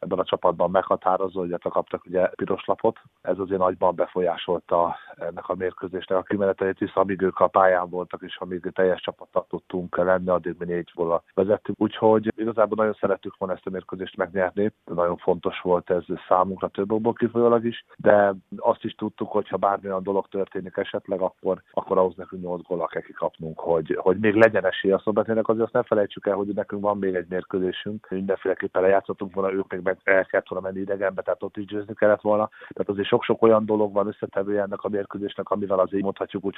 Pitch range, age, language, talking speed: 95-105 Hz, 30-49, Hungarian, 200 wpm